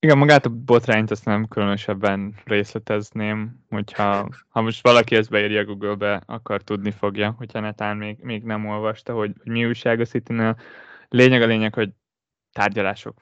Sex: male